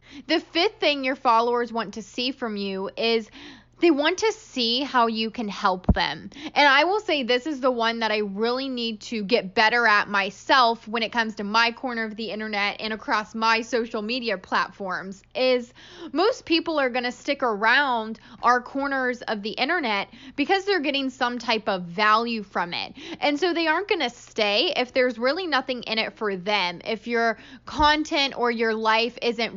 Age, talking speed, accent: 10-29, 195 wpm, American